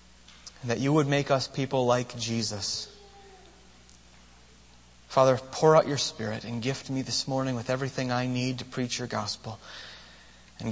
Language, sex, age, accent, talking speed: English, male, 30-49, American, 150 wpm